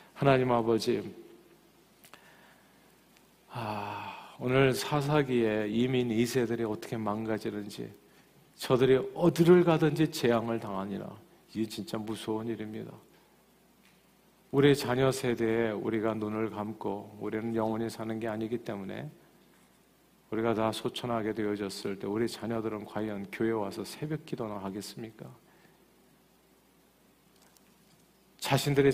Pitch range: 105-120 Hz